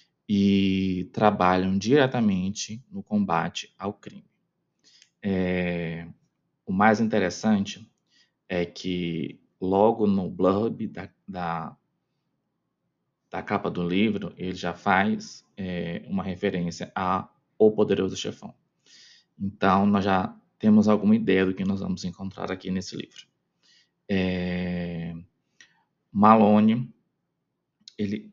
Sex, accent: male, Brazilian